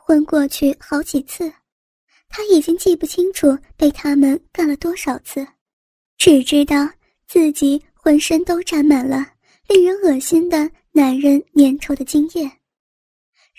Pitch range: 280-340 Hz